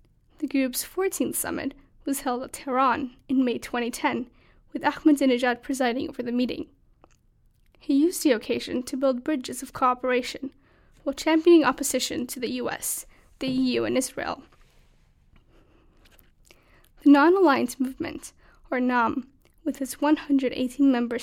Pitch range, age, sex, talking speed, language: 255-295 Hz, 10-29, female, 125 wpm, English